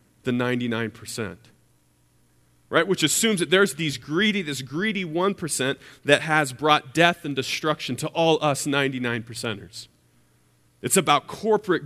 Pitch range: 110-175 Hz